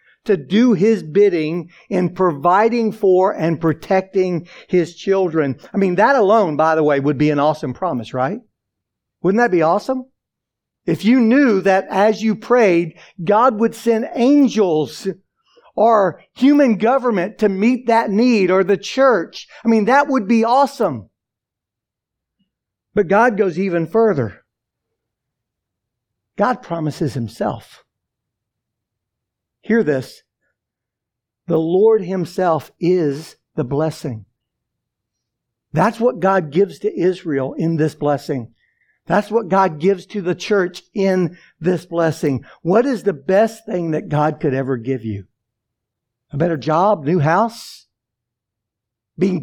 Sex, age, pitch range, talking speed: male, 60-79, 130-210 Hz, 130 wpm